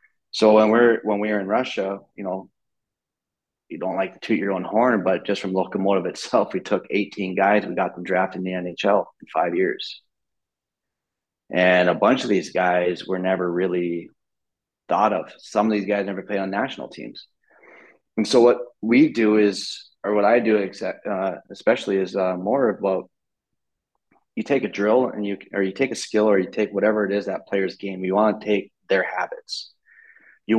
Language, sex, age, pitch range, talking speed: English, male, 30-49, 95-105 Hz, 205 wpm